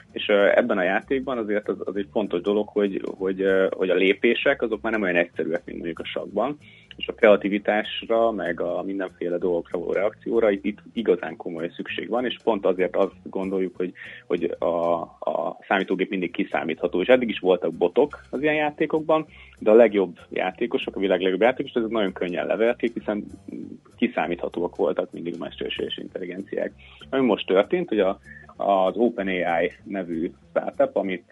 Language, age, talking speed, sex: Hungarian, 30-49, 165 wpm, male